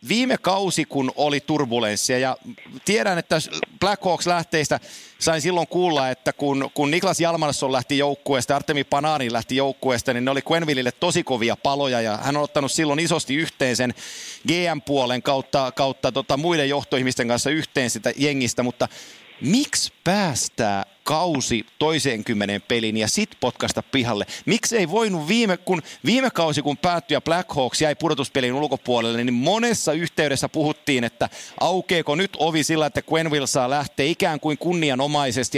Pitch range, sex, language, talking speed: 130-160 Hz, male, Finnish, 150 wpm